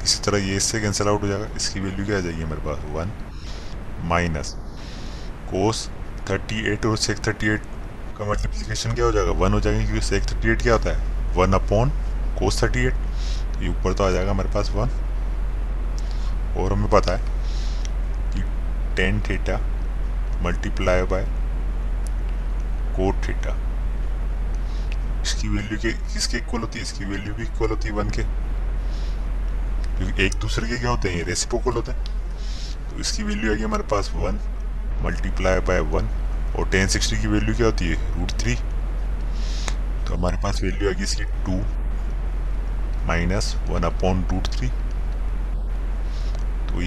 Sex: male